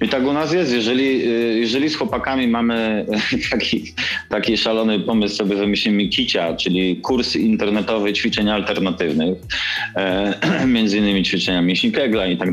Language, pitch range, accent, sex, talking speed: Polish, 95-125 Hz, native, male, 135 wpm